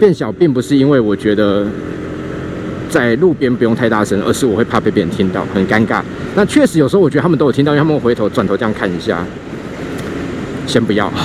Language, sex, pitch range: Chinese, male, 115-160 Hz